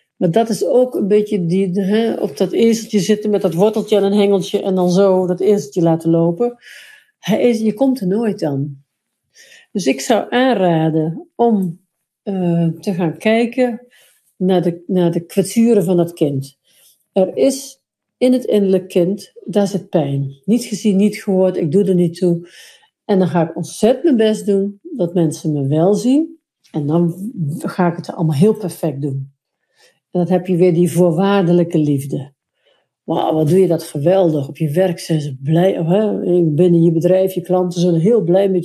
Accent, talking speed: Dutch, 180 wpm